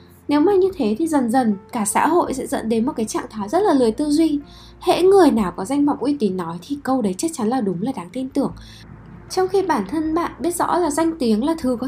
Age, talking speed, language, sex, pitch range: 10-29, 280 wpm, Vietnamese, female, 210-290 Hz